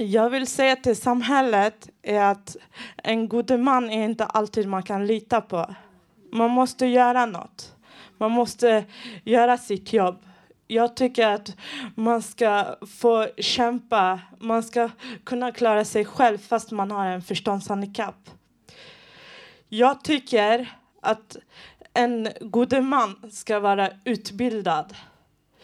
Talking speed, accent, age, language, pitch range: 125 wpm, native, 20-39, Swedish, 205-255 Hz